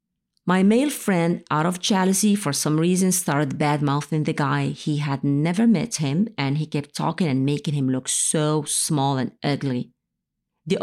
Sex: female